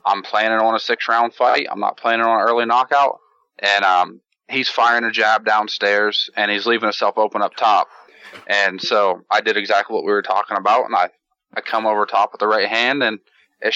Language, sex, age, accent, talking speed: English, male, 20-39, American, 215 wpm